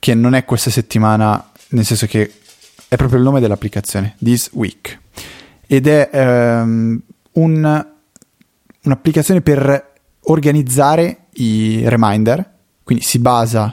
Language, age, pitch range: Italian, 20-39, 110-145 Hz